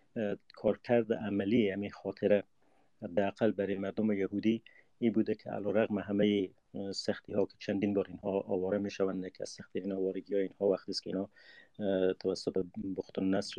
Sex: male